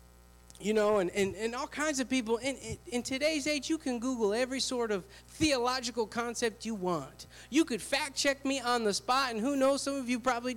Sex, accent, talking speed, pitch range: male, American, 220 wpm, 160-240 Hz